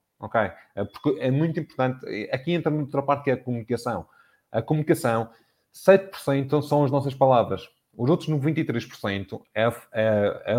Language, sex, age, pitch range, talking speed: Portuguese, male, 20-39, 110-140 Hz, 160 wpm